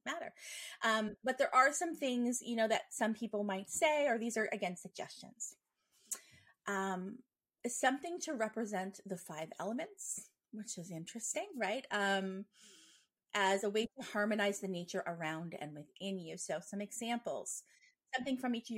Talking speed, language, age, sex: 155 wpm, English, 30-49, female